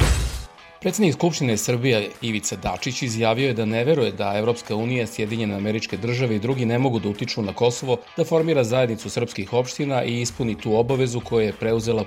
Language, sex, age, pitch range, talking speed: English, male, 40-59, 105-125 Hz, 180 wpm